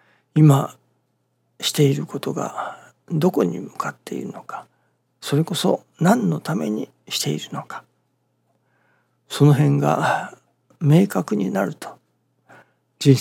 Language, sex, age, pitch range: Japanese, male, 60-79, 140-175 Hz